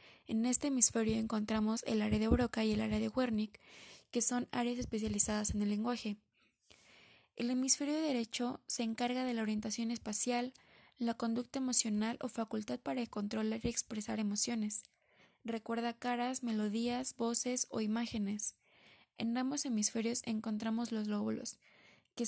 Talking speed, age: 145 wpm, 20-39